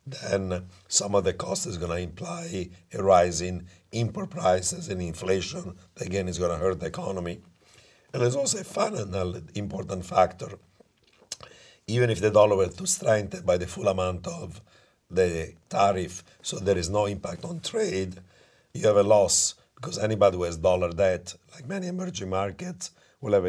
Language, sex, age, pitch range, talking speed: English, male, 50-69, 90-105 Hz, 165 wpm